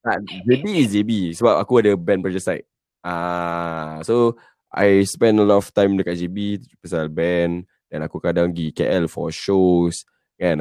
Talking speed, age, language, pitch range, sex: 165 wpm, 20-39, Malay, 80-105 Hz, male